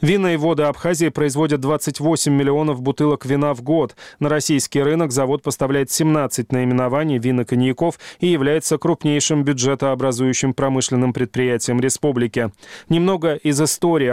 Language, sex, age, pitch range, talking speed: Russian, male, 20-39, 130-150 Hz, 125 wpm